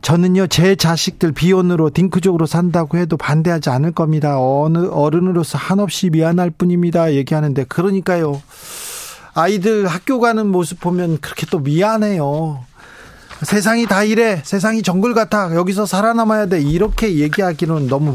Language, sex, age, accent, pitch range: Korean, male, 40-59, native, 140-185 Hz